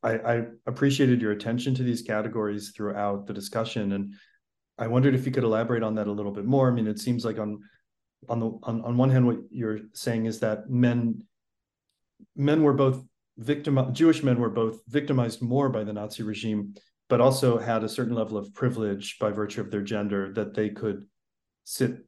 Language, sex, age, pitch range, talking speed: English, male, 30-49, 105-120 Hz, 200 wpm